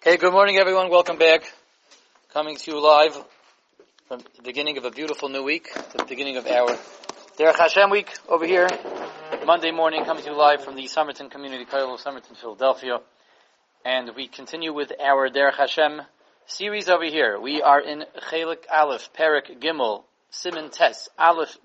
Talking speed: 170 wpm